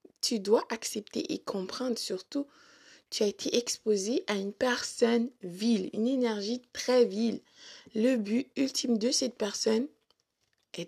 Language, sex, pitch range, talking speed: French, female, 205-260 Hz, 140 wpm